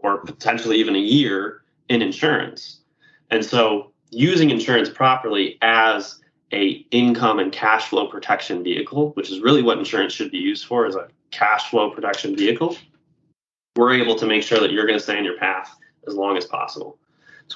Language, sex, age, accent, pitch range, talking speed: English, male, 20-39, American, 100-140 Hz, 180 wpm